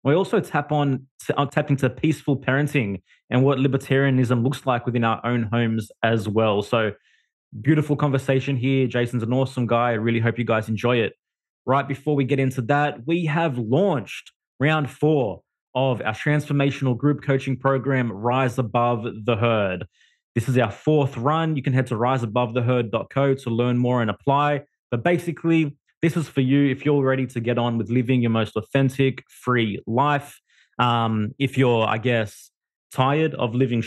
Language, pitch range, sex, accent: English, 120-140 Hz, male, Australian